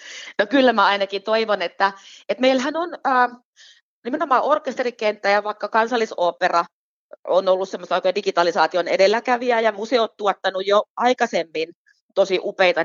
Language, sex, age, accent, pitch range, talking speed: Finnish, female, 30-49, native, 180-245 Hz, 130 wpm